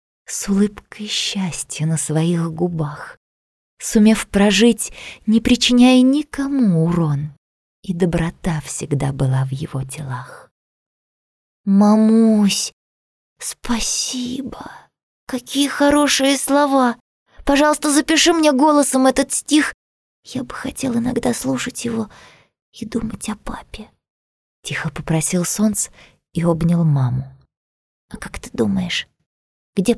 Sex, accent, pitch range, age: female, native, 155-240 Hz, 20-39